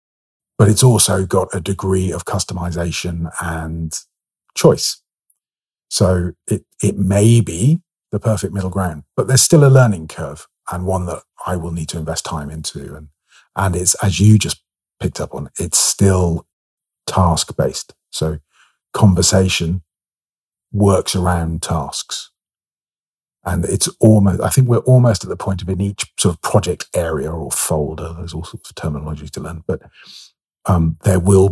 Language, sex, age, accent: English, male, 40-59, British